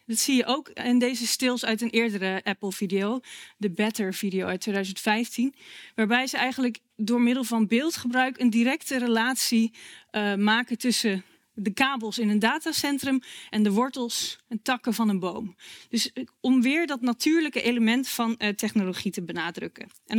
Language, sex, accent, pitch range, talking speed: Dutch, female, Dutch, 210-255 Hz, 165 wpm